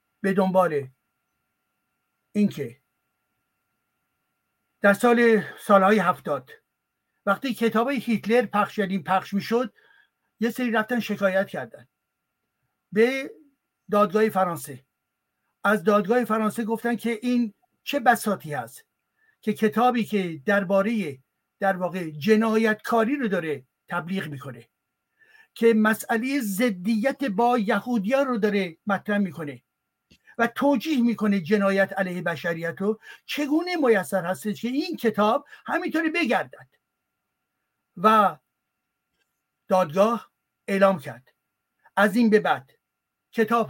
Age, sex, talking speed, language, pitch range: 60-79, male, 105 wpm, Persian, 185-235 Hz